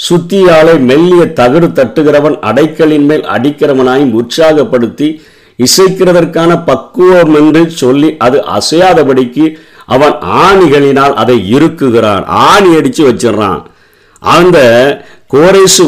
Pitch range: 110-150 Hz